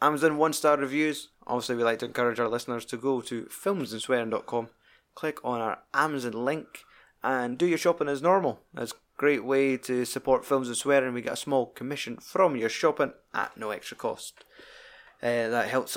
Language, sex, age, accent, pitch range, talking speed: English, male, 20-39, British, 120-145 Hz, 190 wpm